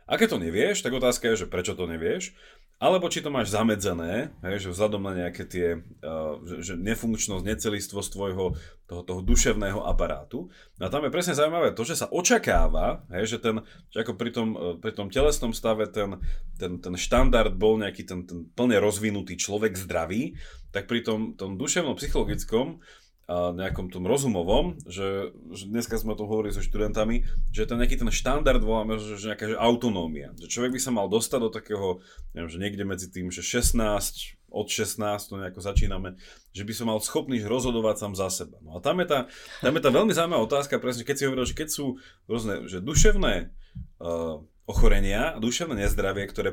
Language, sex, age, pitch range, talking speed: Slovak, male, 30-49, 90-115 Hz, 195 wpm